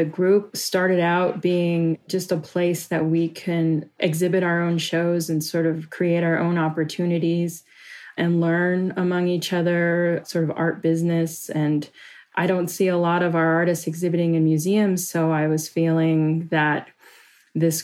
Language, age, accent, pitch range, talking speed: English, 20-39, American, 155-170 Hz, 165 wpm